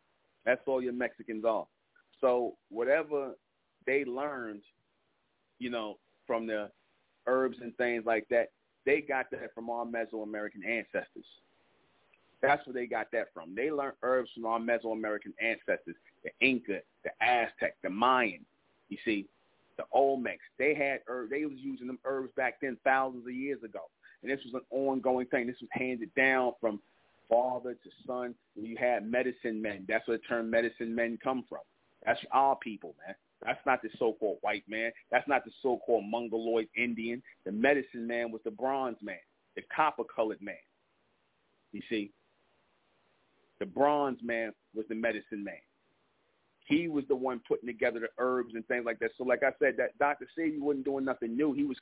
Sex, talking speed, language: male, 175 wpm, English